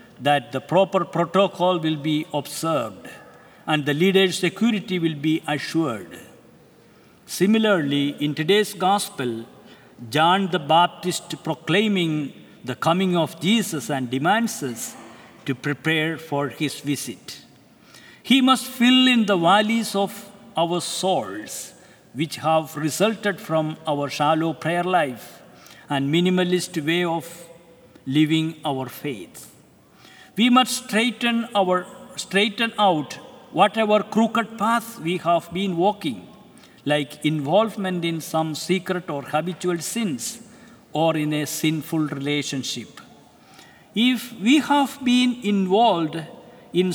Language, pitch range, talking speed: English, 155-205 Hz, 115 wpm